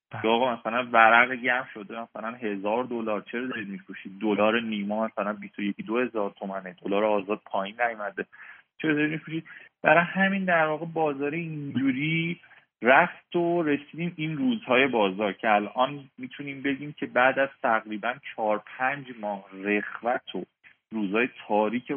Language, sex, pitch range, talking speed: Persian, male, 105-135 Hz, 140 wpm